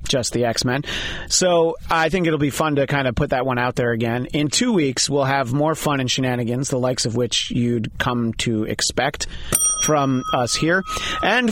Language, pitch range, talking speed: English, 120-160 Hz, 205 wpm